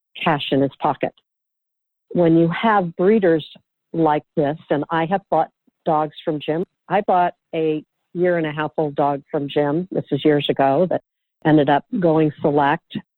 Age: 50-69